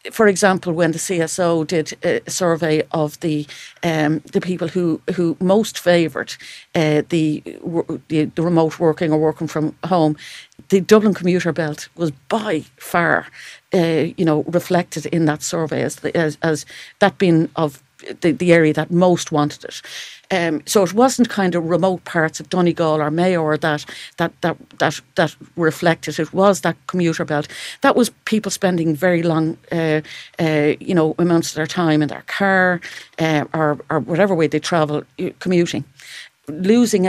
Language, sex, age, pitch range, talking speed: English, female, 50-69, 155-180 Hz, 170 wpm